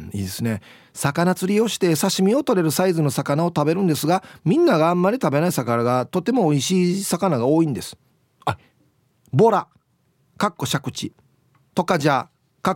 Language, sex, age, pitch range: Japanese, male, 40-59, 130-190 Hz